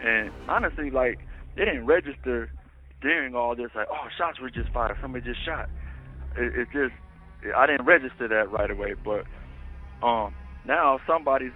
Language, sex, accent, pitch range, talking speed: English, male, American, 85-135 Hz, 165 wpm